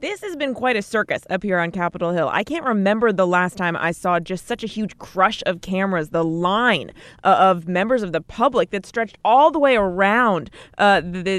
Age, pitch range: 20-39, 175-225 Hz